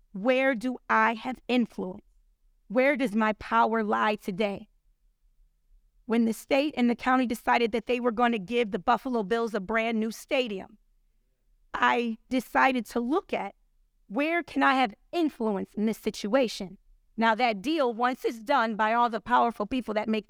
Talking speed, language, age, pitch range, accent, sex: 170 wpm, English, 30-49, 220-260 Hz, American, female